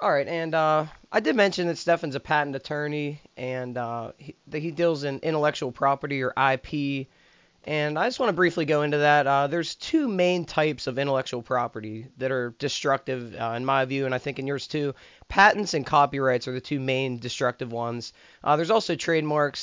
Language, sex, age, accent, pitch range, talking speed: English, male, 20-39, American, 130-160 Hz, 200 wpm